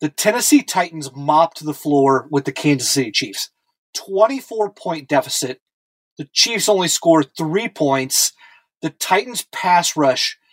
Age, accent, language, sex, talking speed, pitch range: 30-49, American, English, male, 135 wpm, 150-220 Hz